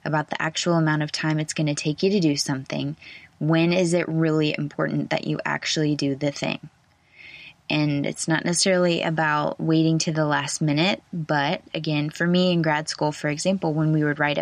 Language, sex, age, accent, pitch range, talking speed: English, female, 20-39, American, 150-180 Hz, 200 wpm